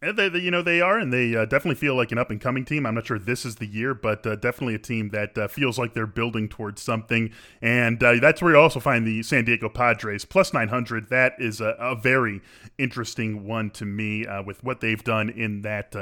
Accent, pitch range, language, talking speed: American, 110-130 Hz, English, 245 wpm